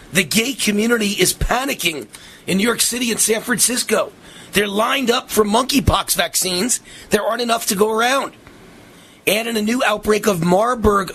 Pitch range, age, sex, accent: 185-230 Hz, 40-59, male, American